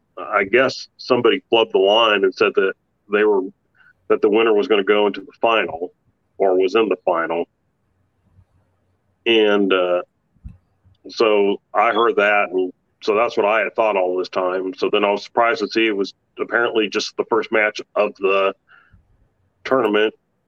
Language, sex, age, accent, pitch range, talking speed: English, male, 40-59, American, 95-130 Hz, 175 wpm